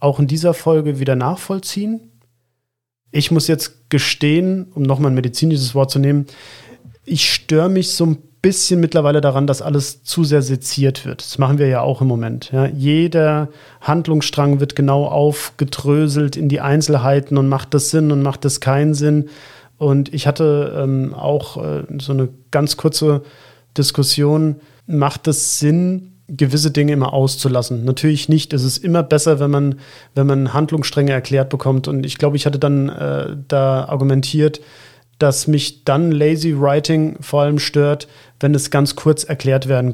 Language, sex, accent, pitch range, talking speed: German, male, German, 140-155 Hz, 165 wpm